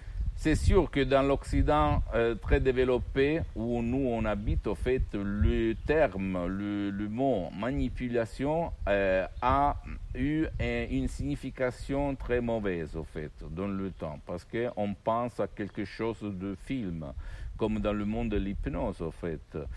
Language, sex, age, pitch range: Italian, male, 60-79, 90-105 Hz